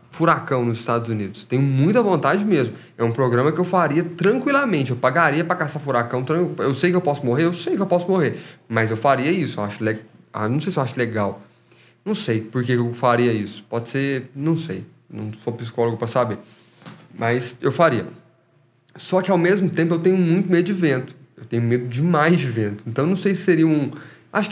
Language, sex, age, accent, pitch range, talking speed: Portuguese, male, 20-39, Brazilian, 115-165 Hz, 215 wpm